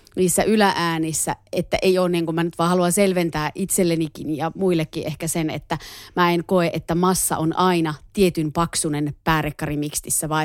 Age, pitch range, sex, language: 30-49, 160-200 Hz, female, Finnish